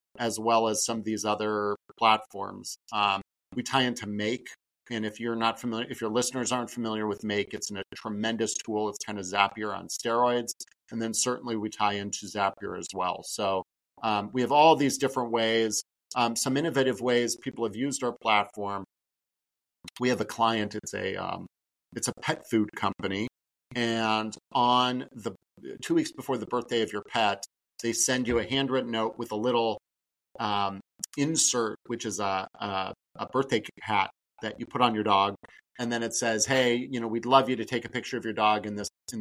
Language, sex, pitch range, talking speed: English, male, 105-125 Hz, 195 wpm